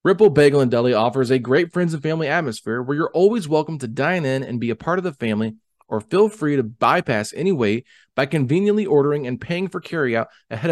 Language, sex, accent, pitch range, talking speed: English, male, American, 115-170 Hz, 220 wpm